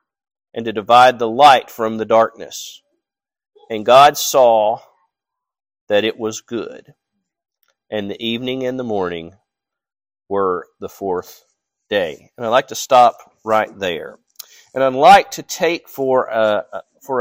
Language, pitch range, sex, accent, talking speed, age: English, 120-190 Hz, male, American, 140 wpm, 40-59